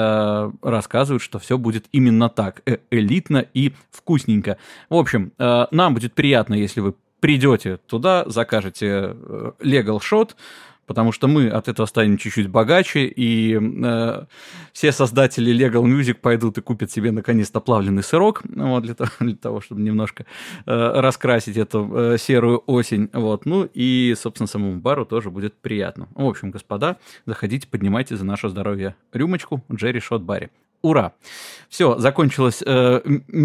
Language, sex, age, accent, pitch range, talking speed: Russian, male, 20-39, native, 110-140 Hz, 140 wpm